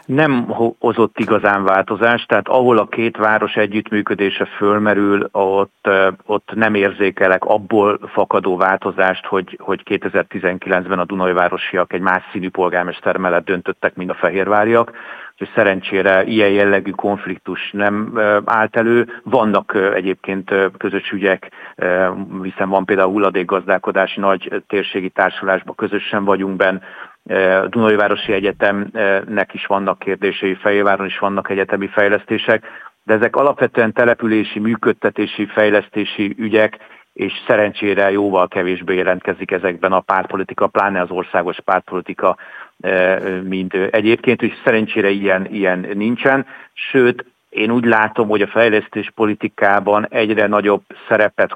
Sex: male